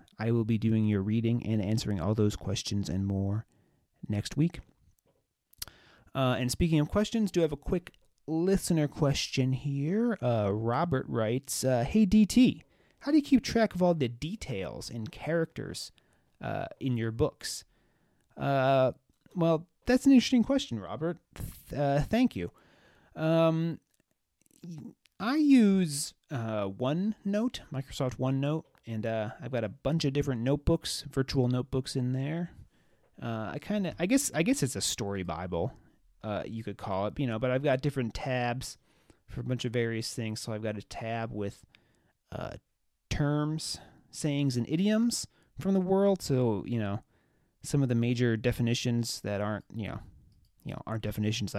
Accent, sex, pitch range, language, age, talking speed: American, male, 110-160 Hz, English, 30-49, 160 wpm